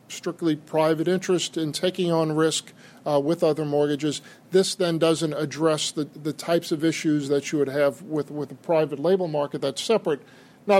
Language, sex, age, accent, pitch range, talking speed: English, male, 50-69, American, 145-180 Hz, 185 wpm